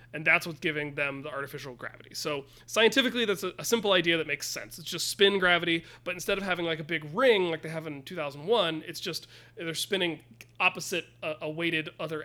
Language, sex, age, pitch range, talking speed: English, male, 30-49, 155-185 Hz, 205 wpm